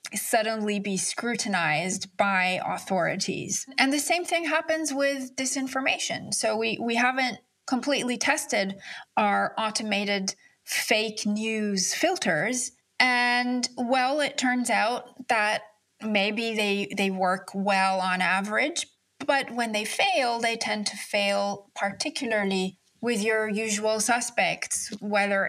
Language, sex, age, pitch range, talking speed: English, female, 30-49, 200-260 Hz, 120 wpm